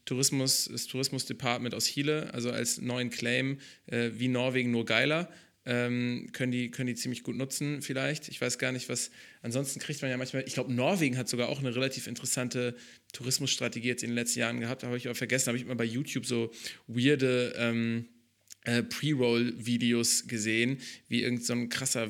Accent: German